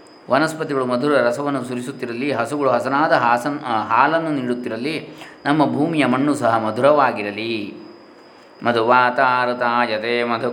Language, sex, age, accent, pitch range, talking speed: Kannada, male, 20-39, native, 120-125 Hz, 95 wpm